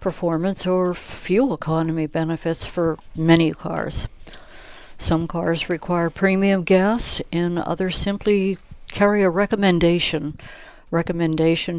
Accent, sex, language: American, female, English